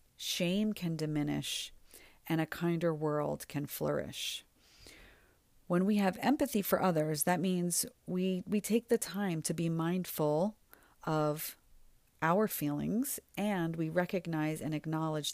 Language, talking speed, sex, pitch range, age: English, 130 wpm, female, 155-195 Hz, 40-59